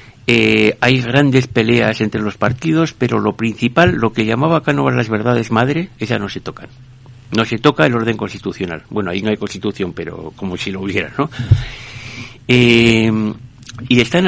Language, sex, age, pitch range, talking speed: Spanish, male, 60-79, 100-130 Hz, 170 wpm